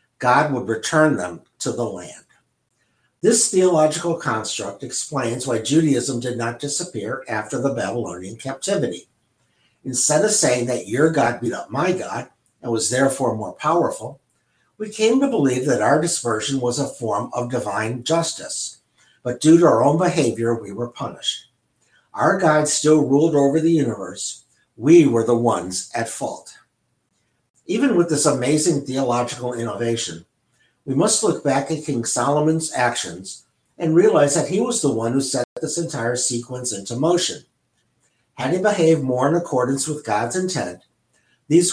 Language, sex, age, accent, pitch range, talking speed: English, male, 60-79, American, 120-160 Hz, 155 wpm